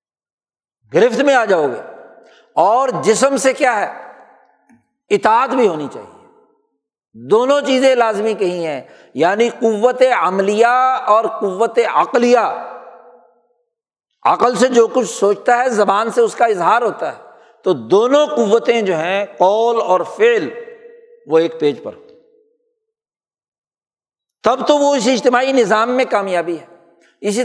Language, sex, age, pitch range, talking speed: Urdu, male, 60-79, 200-295 Hz, 130 wpm